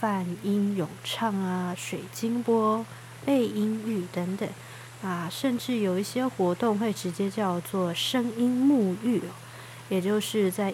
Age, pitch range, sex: 20-39, 175-220 Hz, female